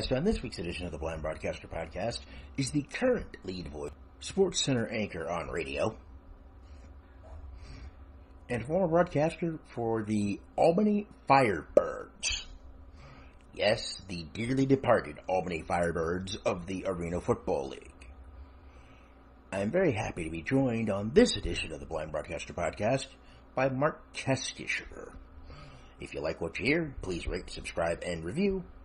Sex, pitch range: male, 75-120 Hz